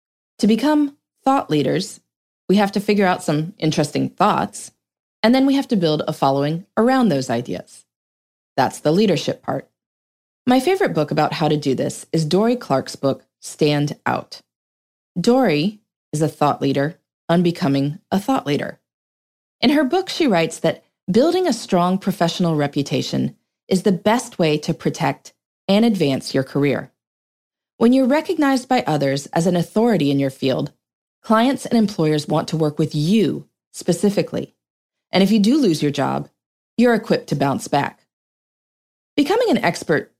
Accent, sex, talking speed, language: American, female, 160 wpm, English